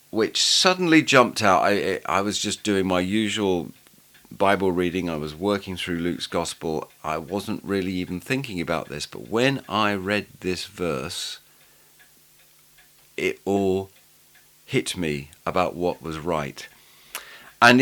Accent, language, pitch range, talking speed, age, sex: British, English, 85-115 Hz, 140 wpm, 40-59, male